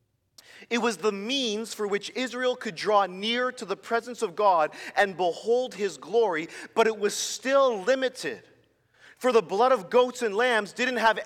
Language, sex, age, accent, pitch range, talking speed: English, male, 40-59, American, 175-245 Hz, 175 wpm